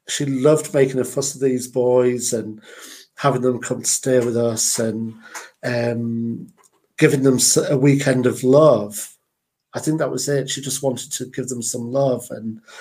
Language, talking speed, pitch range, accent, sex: English, 180 wpm, 115-135 Hz, British, male